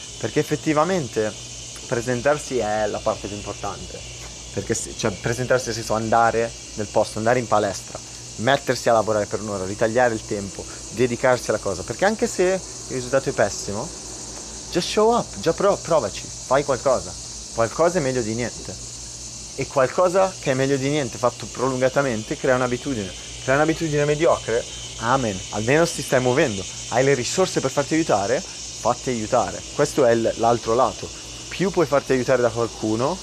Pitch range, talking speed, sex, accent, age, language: 110-140 Hz, 160 wpm, male, native, 30-49, Italian